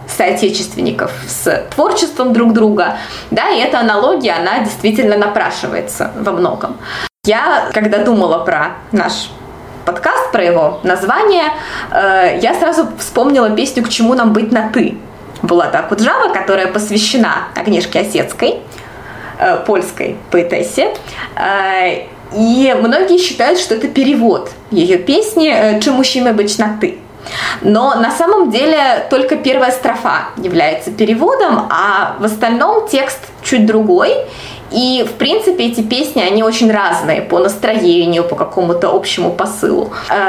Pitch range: 205-280 Hz